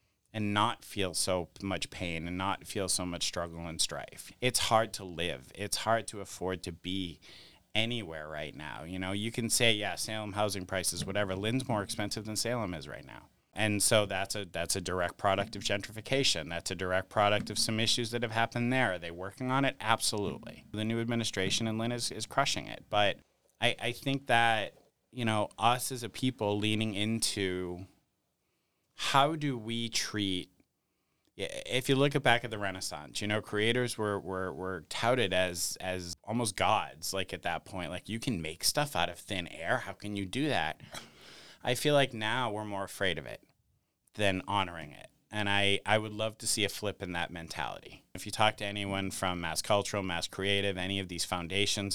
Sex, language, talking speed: male, English, 200 wpm